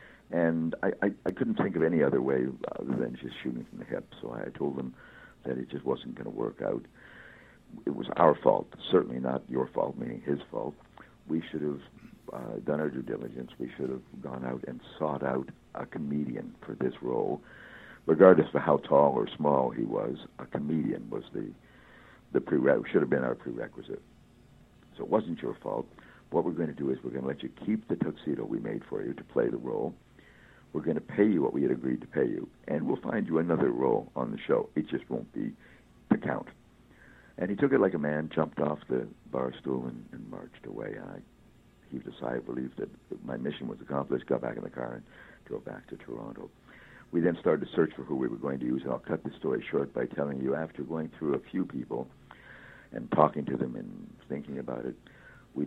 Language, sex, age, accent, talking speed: English, male, 60-79, American, 220 wpm